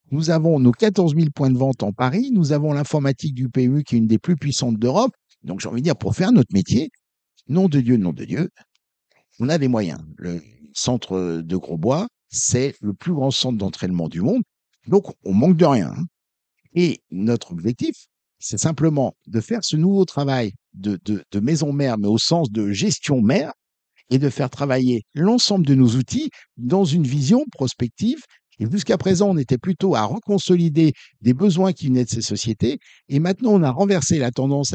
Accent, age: French, 60-79